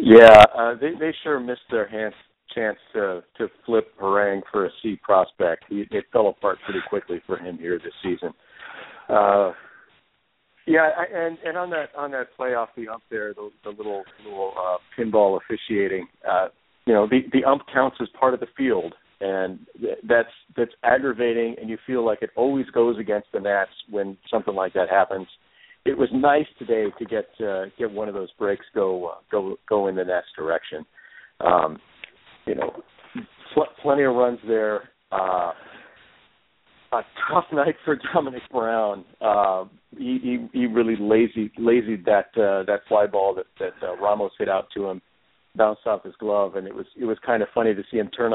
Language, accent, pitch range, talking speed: English, American, 100-135 Hz, 185 wpm